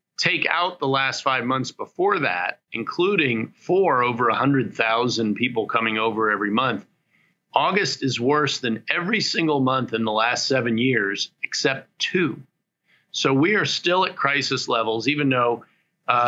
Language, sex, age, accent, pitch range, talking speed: English, male, 40-59, American, 115-140 Hz, 155 wpm